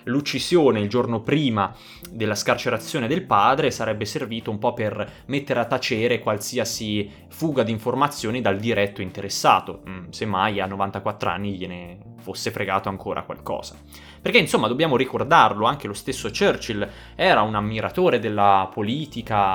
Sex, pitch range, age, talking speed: male, 105-135 Hz, 20-39, 140 wpm